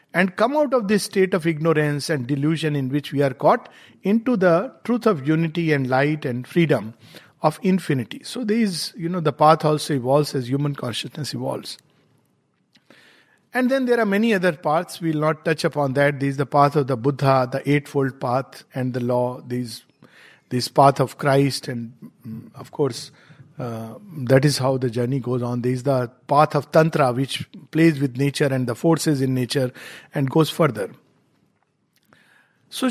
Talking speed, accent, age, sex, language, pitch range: 180 wpm, Indian, 50-69, male, English, 140-200 Hz